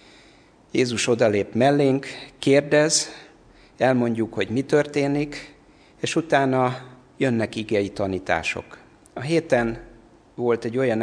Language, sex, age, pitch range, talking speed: Hungarian, male, 60-79, 105-125 Hz, 100 wpm